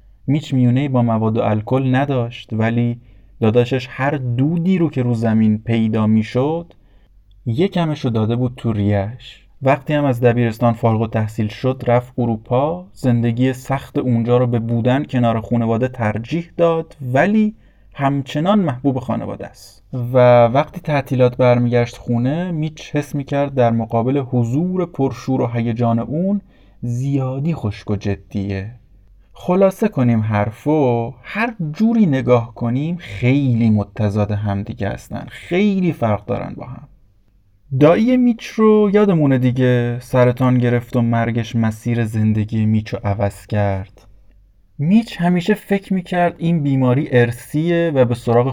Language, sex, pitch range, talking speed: Persian, male, 110-145 Hz, 130 wpm